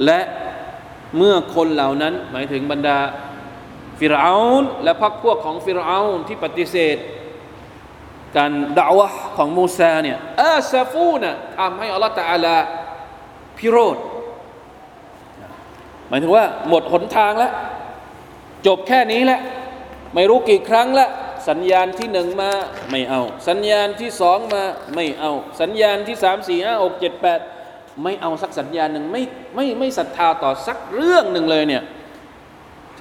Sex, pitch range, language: male, 140-215 Hz, Thai